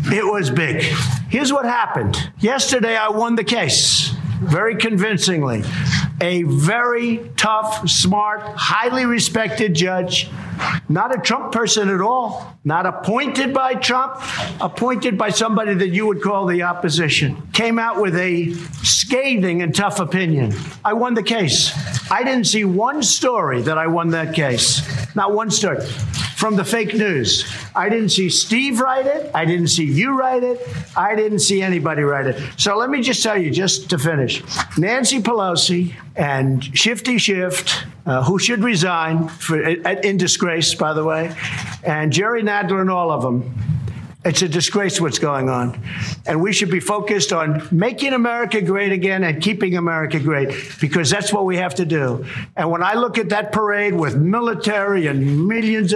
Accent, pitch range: American, 155-215 Hz